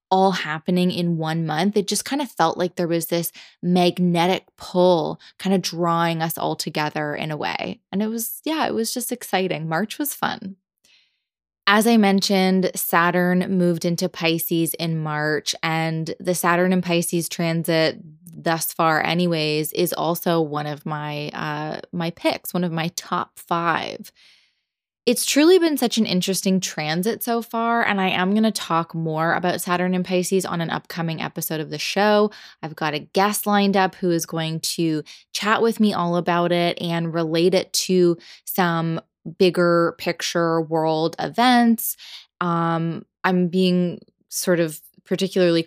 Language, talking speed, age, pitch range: English, 165 wpm, 20-39, 165-195 Hz